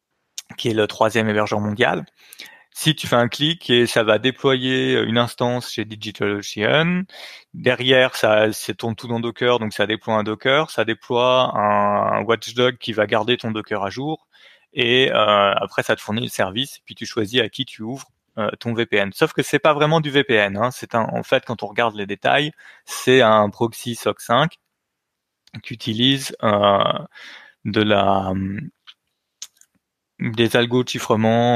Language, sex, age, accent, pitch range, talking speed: French, male, 20-39, French, 110-130 Hz, 175 wpm